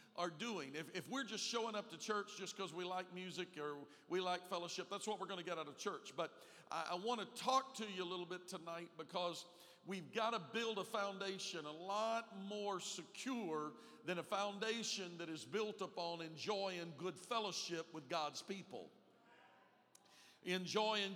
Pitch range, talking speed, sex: 170-220 Hz, 180 wpm, male